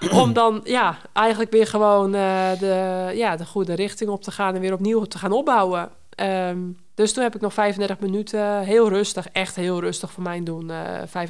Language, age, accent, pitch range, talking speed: Dutch, 20-39, Dutch, 175-200 Hz, 200 wpm